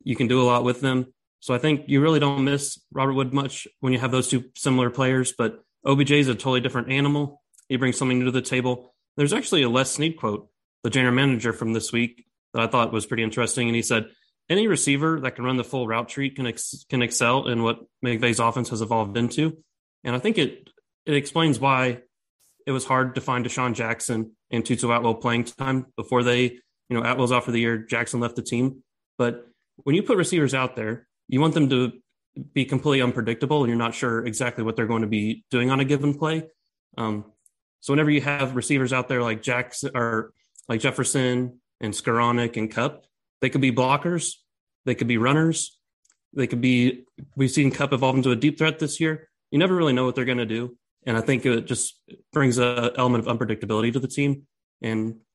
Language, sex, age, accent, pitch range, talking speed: English, male, 30-49, American, 120-140 Hz, 220 wpm